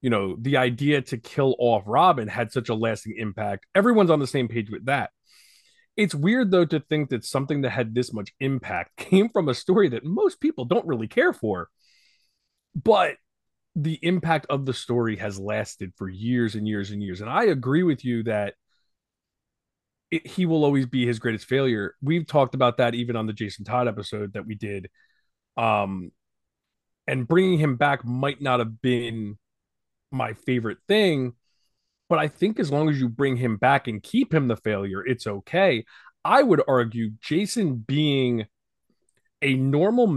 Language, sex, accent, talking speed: English, male, American, 180 wpm